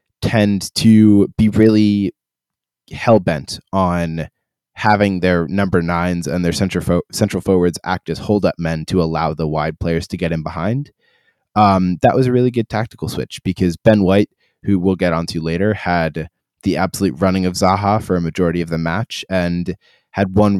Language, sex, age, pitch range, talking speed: English, male, 20-39, 85-105 Hz, 175 wpm